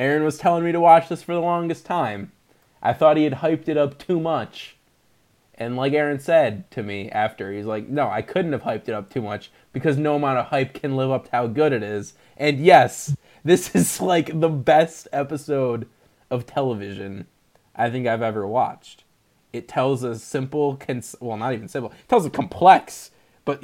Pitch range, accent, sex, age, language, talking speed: 120-155 Hz, American, male, 20-39, English, 200 wpm